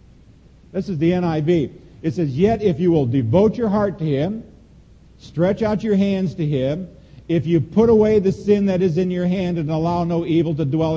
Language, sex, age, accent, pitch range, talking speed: English, male, 50-69, American, 155-195 Hz, 210 wpm